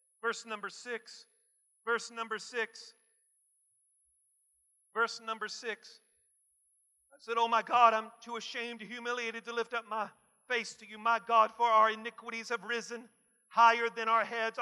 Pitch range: 230-275 Hz